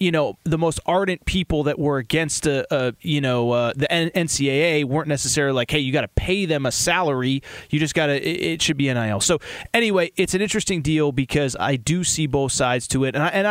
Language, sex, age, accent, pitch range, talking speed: English, male, 30-49, American, 135-185 Hz, 235 wpm